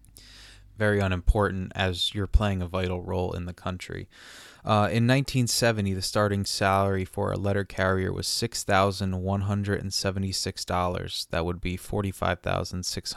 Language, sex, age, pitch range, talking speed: English, male, 20-39, 90-110 Hz, 130 wpm